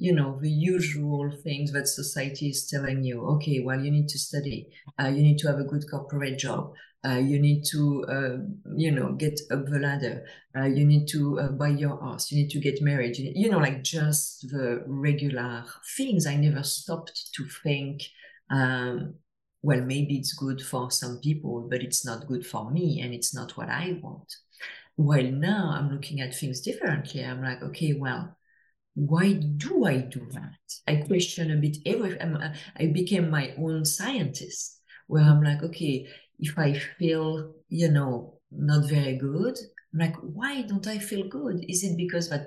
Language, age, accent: English, 40-59, French